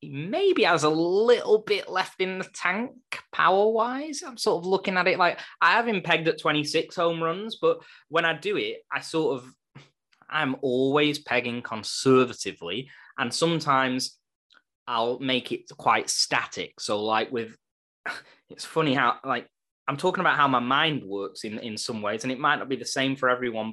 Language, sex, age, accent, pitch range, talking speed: English, male, 10-29, British, 110-160 Hz, 180 wpm